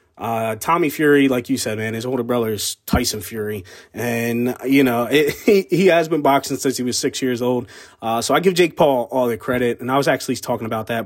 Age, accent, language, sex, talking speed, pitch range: 20-39, American, English, male, 240 wpm, 120-145 Hz